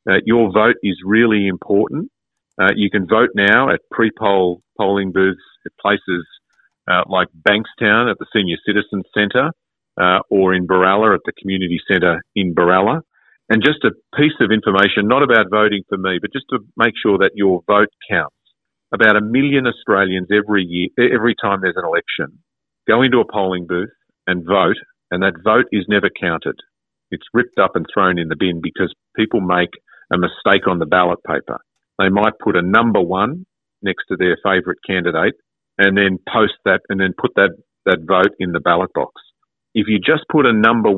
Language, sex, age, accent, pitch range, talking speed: English, male, 40-59, Australian, 95-105 Hz, 185 wpm